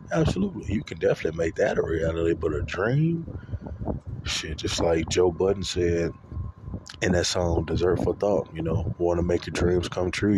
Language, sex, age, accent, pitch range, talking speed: English, male, 20-39, American, 80-90 Hz, 185 wpm